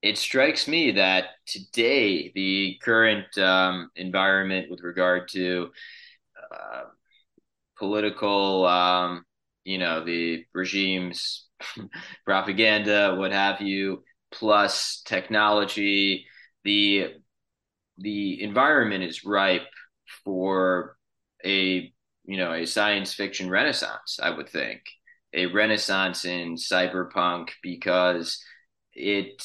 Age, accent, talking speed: 20-39, American, 95 wpm